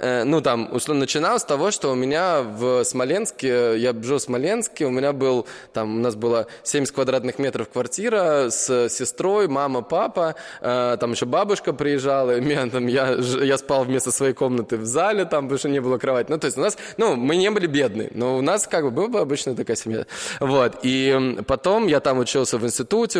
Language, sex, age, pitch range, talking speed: Russian, male, 20-39, 125-155 Hz, 200 wpm